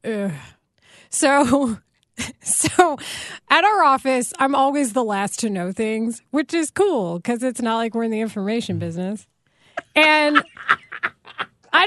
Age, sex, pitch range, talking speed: 20-39, female, 195-285 Hz, 135 wpm